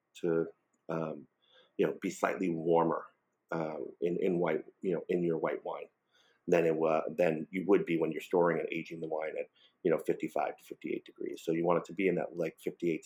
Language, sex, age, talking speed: English, male, 40-59, 220 wpm